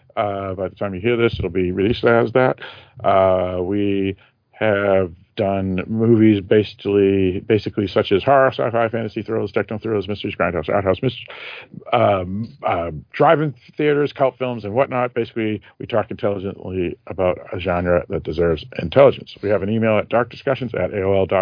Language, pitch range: English, 95-115 Hz